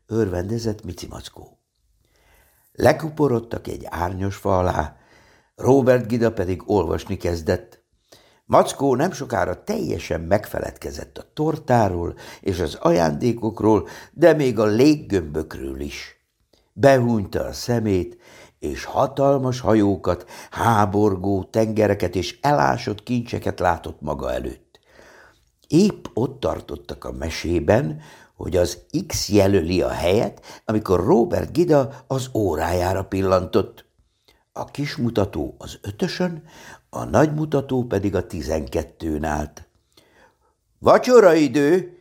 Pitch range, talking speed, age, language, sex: 90-135 Hz, 105 wpm, 60-79, Hungarian, male